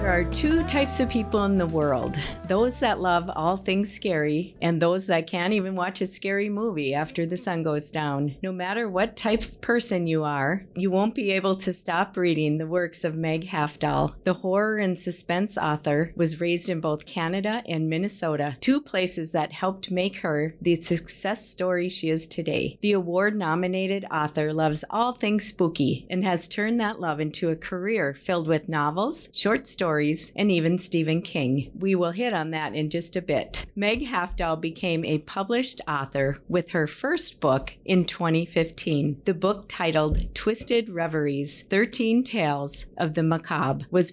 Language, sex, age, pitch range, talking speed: English, female, 40-59, 160-205 Hz, 175 wpm